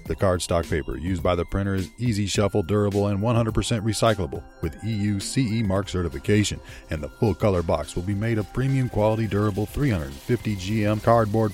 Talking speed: 160 wpm